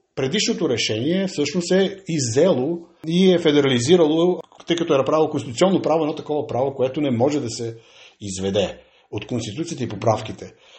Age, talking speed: 50-69, 150 wpm